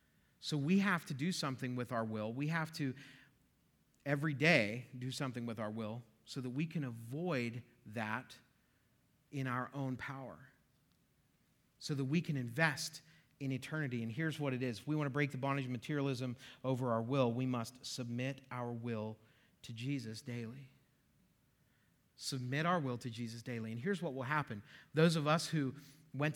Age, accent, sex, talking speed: 40-59, American, male, 175 wpm